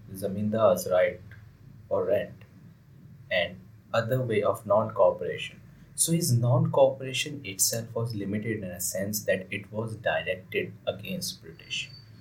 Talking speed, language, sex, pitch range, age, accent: 120 wpm, English, male, 110-130 Hz, 30-49, Indian